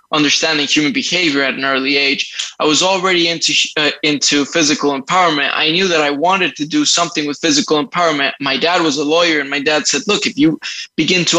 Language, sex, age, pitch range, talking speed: English, male, 20-39, 140-175 Hz, 210 wpm